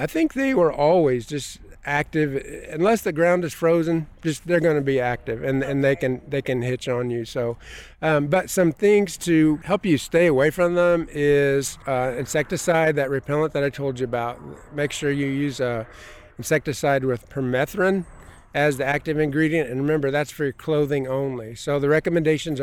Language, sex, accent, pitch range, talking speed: English, male, American, 135-165 Hz, 185 wpm